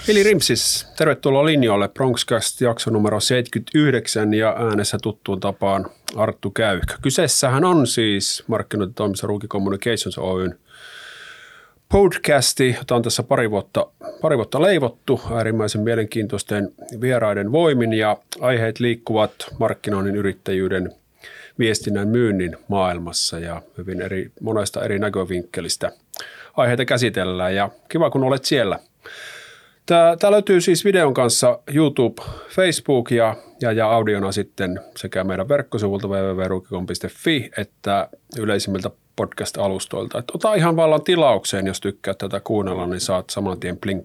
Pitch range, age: 100-130 Hz, 30-49